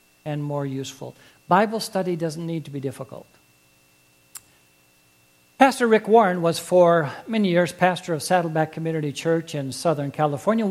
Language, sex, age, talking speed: English, male, 60-79, 140 wpm